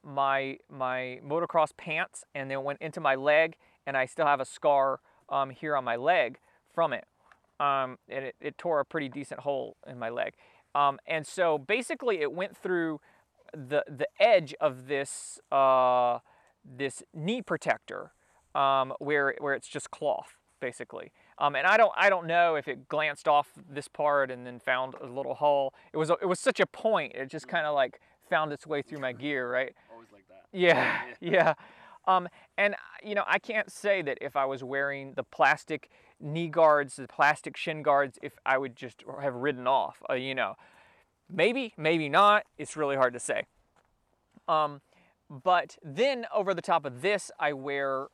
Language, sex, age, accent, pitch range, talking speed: English, male, 20-39, American, 135-175 Hz, 180 wpm